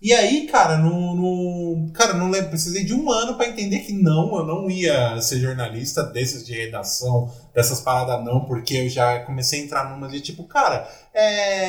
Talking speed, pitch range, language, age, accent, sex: 195 wpm, 125-200 Hz, Portuguese, 20-39, Brazilian, male